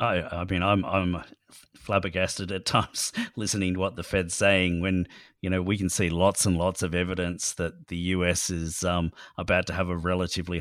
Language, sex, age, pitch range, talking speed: English, male, 40-59, 90-100 Hz, 200 wpm